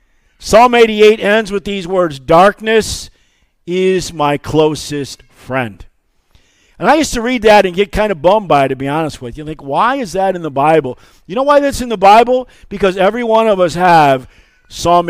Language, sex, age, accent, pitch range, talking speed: English, male, 50-69, American, 145-220 Hz, 200 wpm